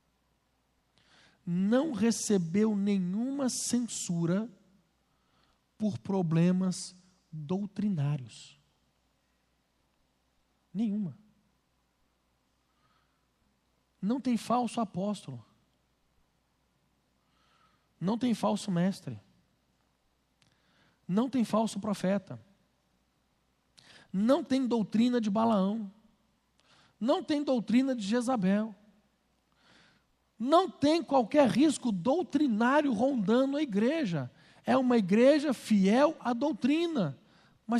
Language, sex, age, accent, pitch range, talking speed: Portuguese, male, 50-69, Brazilian, 185-285 Hz, 70 wpm